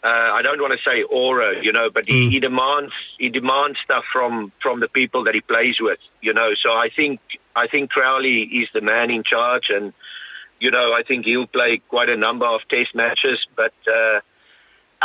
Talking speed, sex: 205 wpm, male